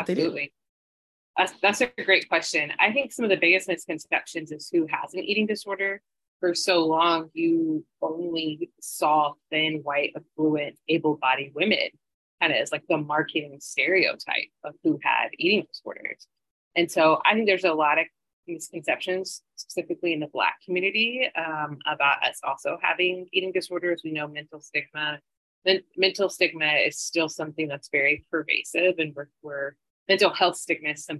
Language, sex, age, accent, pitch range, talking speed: English, female, 30-49, American, 150-185 Hz, 160 wpm